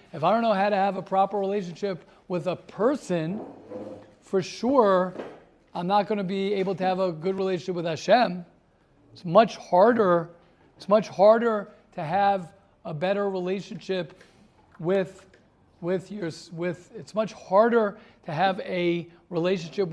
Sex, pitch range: male, 165-200 Hz